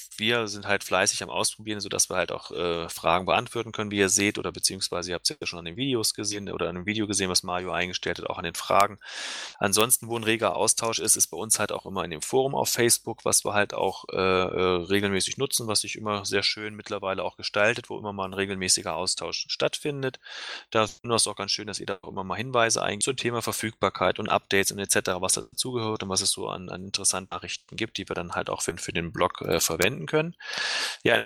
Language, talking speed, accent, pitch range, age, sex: German, 240 wpm, German, 95-115 Hz, 20-39, male